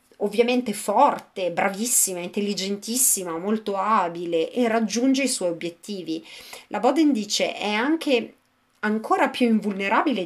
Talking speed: 110 wpm